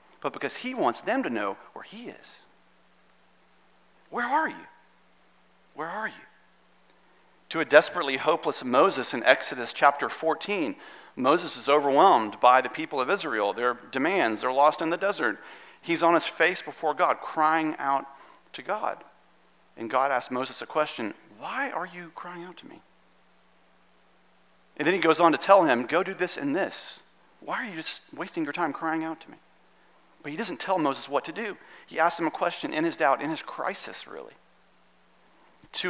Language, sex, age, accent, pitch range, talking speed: English, male, 40-59, American, 125-180 Hz, 180 wpm